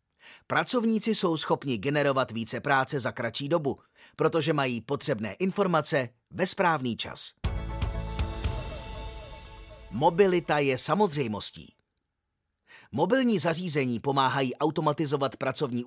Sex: male